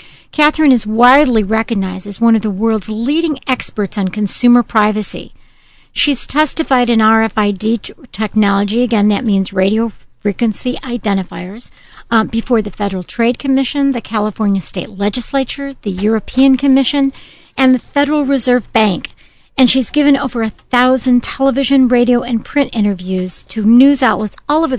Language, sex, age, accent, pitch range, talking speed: English, female, 50-69, American, 215-265 Hz, 145 wpm